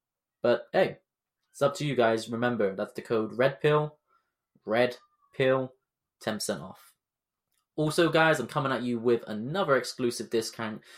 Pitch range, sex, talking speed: 110-135 Hz, male, 150 wpm